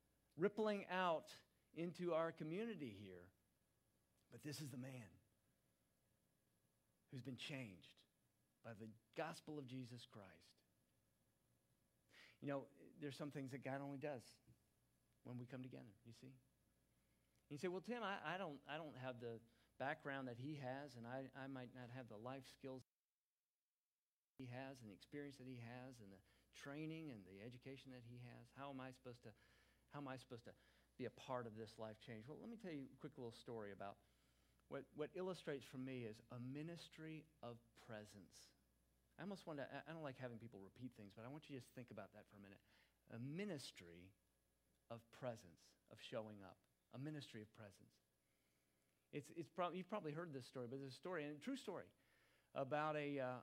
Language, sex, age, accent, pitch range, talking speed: English, male, 50-69, American, 110-145 Hz, 190 wpm